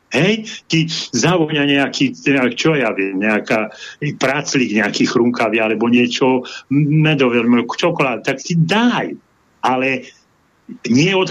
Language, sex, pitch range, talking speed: Slovak, male, 130-180 Hz, 110 wpm